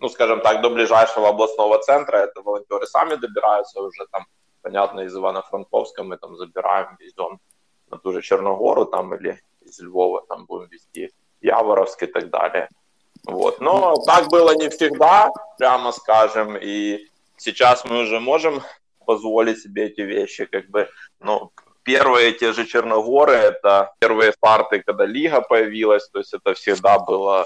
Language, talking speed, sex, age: Russian, 155 wpm, male, 20-39